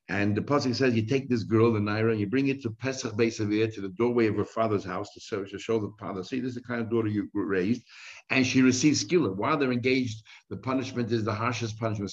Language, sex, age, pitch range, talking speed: English, male, 60-79, 105-130 Hz, 260 wpm